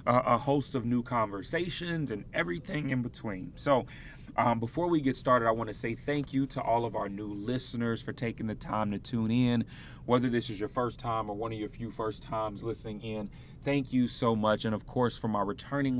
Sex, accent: male, American